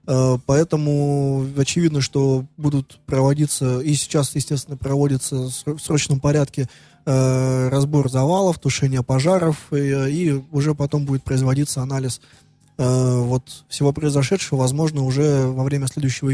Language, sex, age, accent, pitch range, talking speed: Russian, male, 20-39, native, 130-150 Hz, 105 wpm